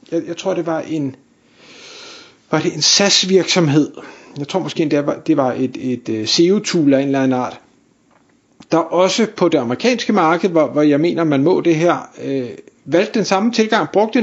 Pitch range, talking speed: 155-205 Hz, 195 wpm